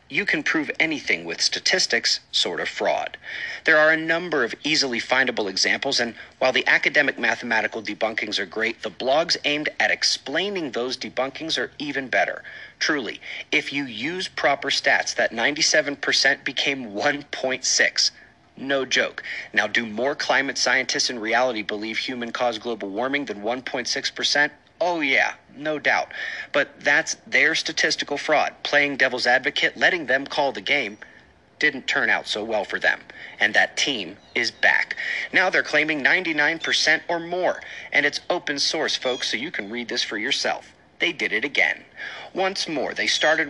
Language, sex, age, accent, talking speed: English, male, 40-59, American, 160 wpm